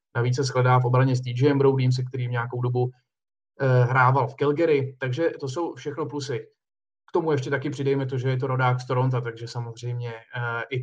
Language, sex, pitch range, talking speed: Czech, male, 125-140 Hz, 195 wpm